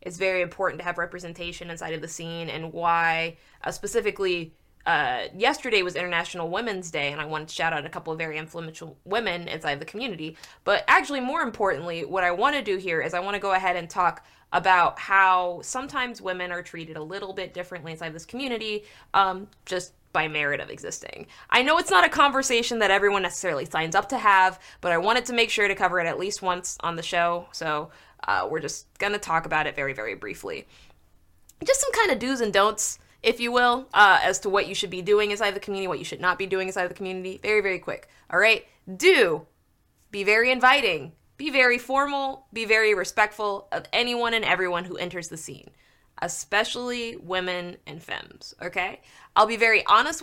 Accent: American